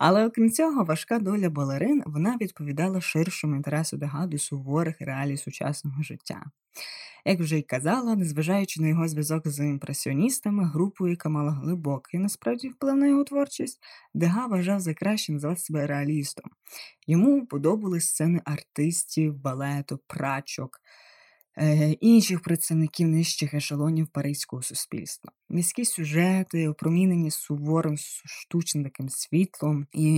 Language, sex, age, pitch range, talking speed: Ukrainian, female, 20-39, 150-185 Hz, 125 wpm